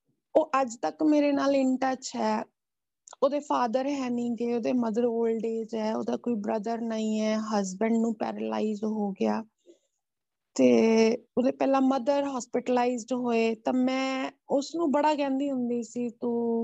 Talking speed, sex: 150 wpm, female